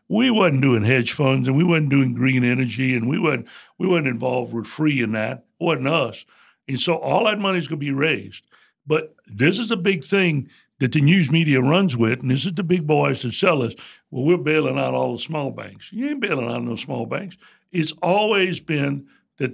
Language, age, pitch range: English, 60-79, 135-185 Hz